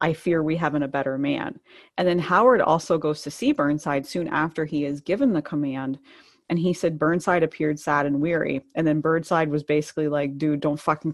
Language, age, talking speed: English, 30-49, 210 wpm